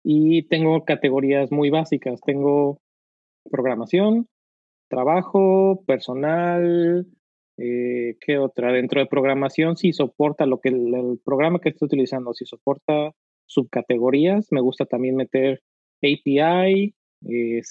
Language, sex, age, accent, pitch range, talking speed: Spanish, male, 30-49, Mexican, 125-155 Hz, 115 wpm